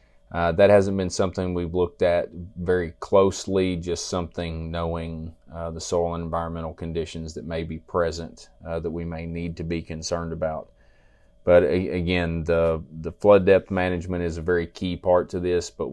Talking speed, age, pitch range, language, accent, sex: 180 wpm, 30-49, 80-90 Hz, English, American, male